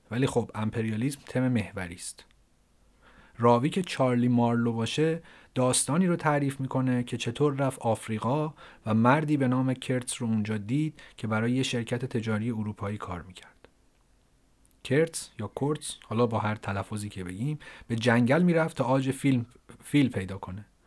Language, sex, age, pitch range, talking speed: Persian, male, 30-49, 110-140 Hz, 150 wpm